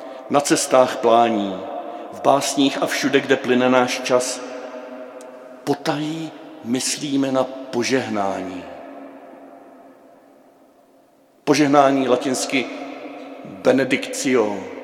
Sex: male